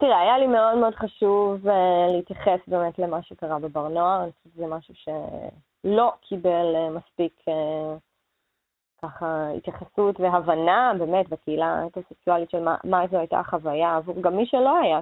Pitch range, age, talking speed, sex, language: 170-200 Hz, 20-39, 150 wpm, female, Hebrew